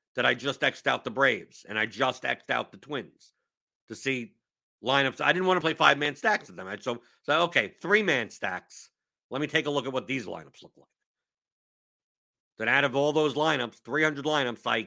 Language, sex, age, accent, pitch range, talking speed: English, male, 50-69, American, 120-150 Hz, 210 wpm